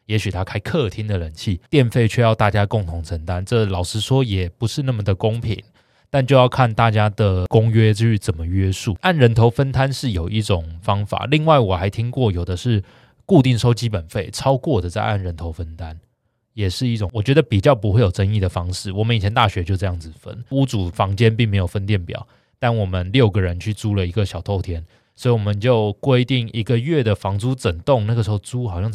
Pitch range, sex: 95-120 Hz, male